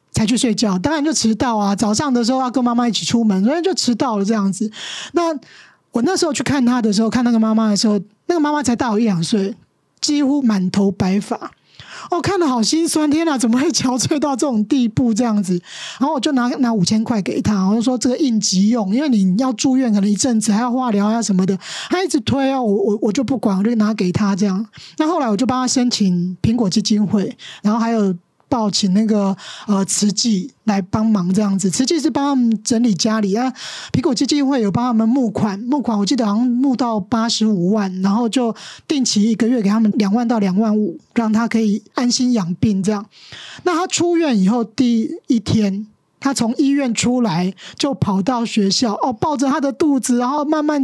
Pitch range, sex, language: 210-265 Hz, male, Chinese